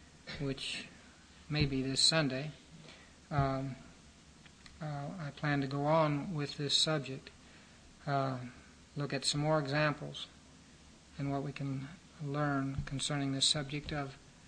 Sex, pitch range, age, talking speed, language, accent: male, 135-150 Hz, 60-79, 125 wpm, English, American